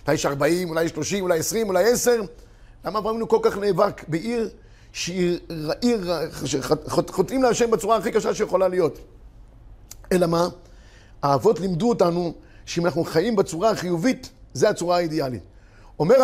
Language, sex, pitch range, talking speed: Hebrew, male, 160-225 Hz, 150 wpm